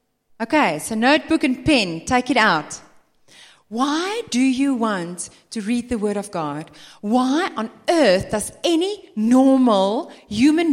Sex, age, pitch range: female, 30-49, 190-280 Hz